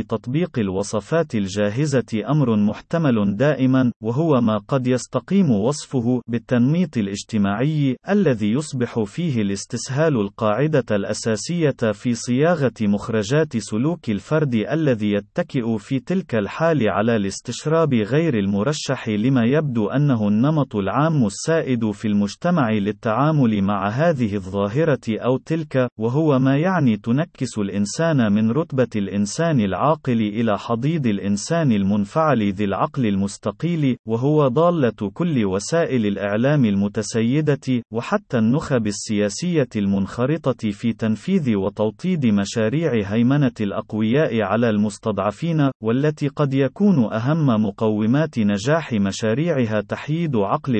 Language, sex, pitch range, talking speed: Arabic, male, 105-150 Hz, 105 wpm